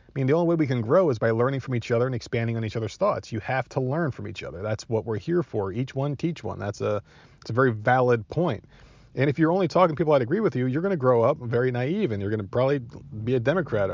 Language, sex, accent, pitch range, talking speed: English, male, American, 110-140 Hz, 295 wpm